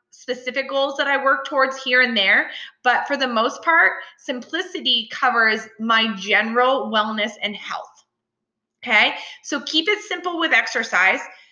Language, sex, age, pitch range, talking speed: English, female, 20-39, 220-280 Hz, 145 wpm